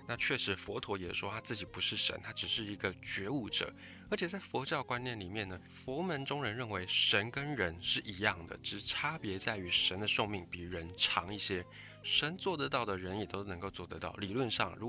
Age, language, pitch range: 20-39, Chinese, 95-130 Hz